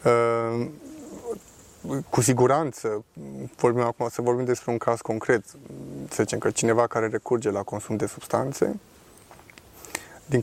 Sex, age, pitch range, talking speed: male, 20-39, 110-130 Hz, 120 wpm